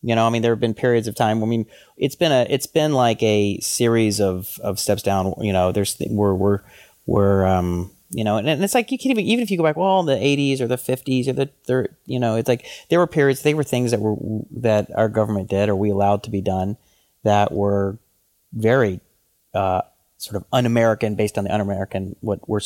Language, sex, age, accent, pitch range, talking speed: English, male, 30-49, American, 100-115 Hz, 240 wpm